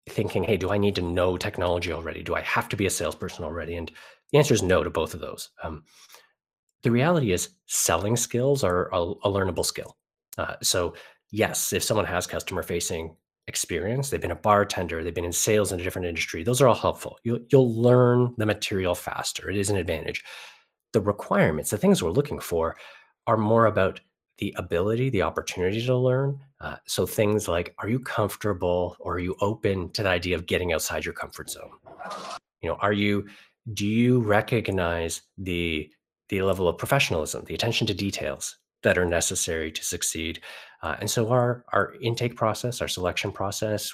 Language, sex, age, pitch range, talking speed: English, male, 30-49, 90-115 Hz, 190 wpm